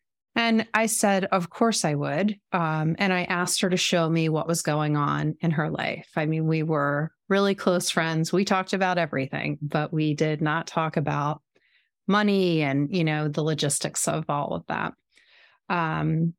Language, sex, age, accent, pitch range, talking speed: English, female, 30-49, American, 155-190 Hz, 185 wpm